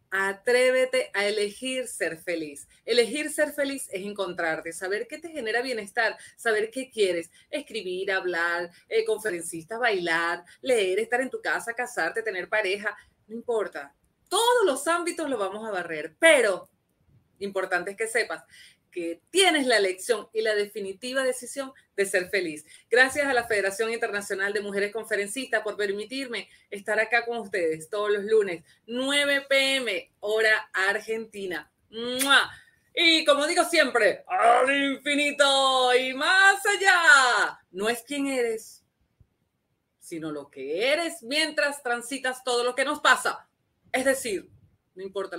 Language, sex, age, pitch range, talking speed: Spanish, female, 30-49, 195-280 Hz, 140 wpm